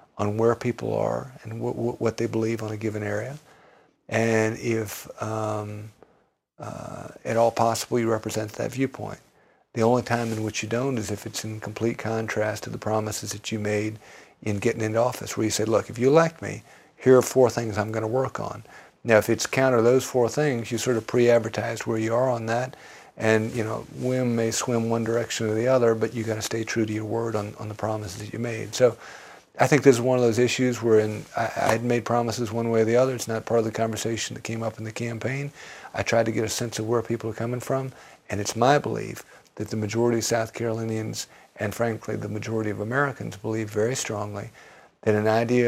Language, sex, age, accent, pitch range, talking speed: English, male, 50-69, American, 110-120 Hz, 230 wpm